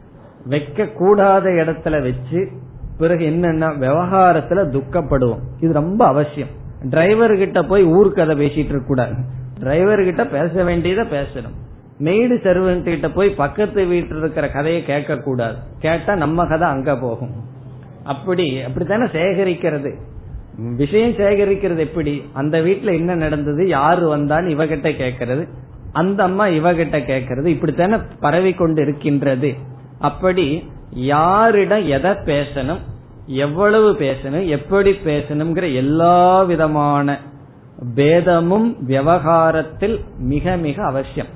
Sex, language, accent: male, Tamil, native